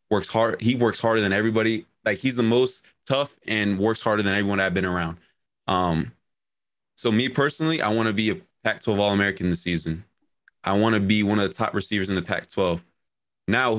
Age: 20-39